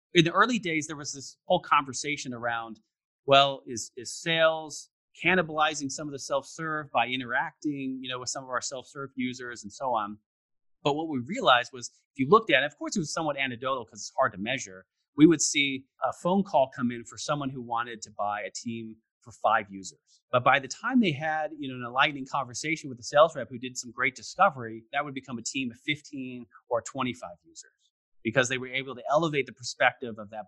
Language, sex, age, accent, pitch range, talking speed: English, male, 30-49, American, 115-150 Hz, 220 wpm